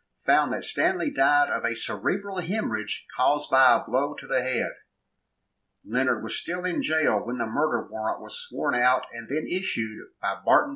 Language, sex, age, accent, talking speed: English, male, 50-69, American, 180 wpm